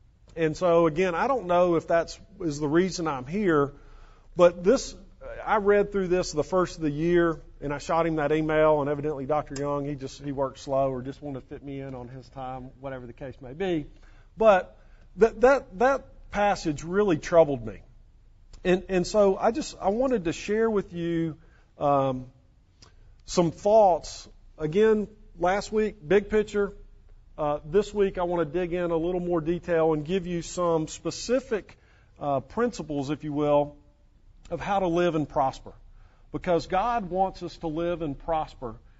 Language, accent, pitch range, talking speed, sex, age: English, American, 135-180 Hz, 180 wpm, male, 40-59